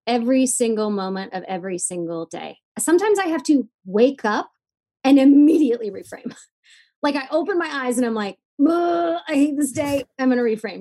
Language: English